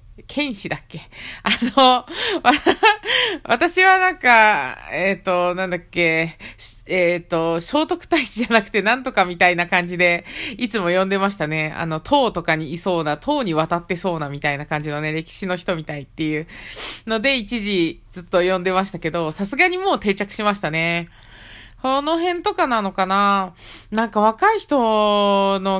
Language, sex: Japanese, female